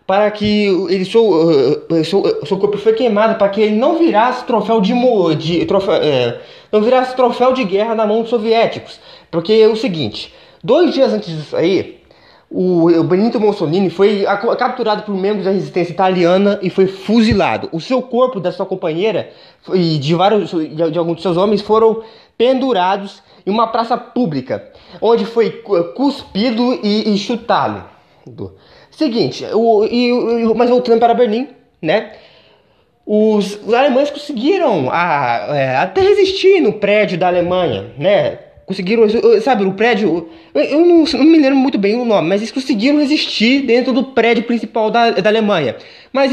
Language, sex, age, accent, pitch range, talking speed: Portuguese, male, 20-39, Brazilian, 180-240 Hz, 155 wpm